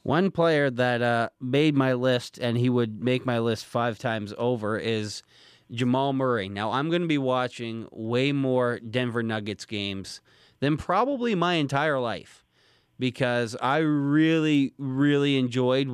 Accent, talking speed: American, 150 wpm